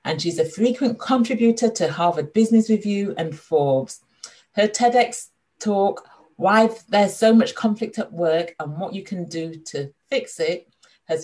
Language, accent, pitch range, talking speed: English, British, 160-200 Hz, 160 wpm